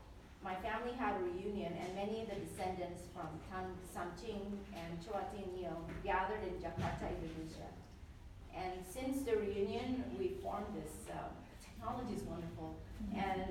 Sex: female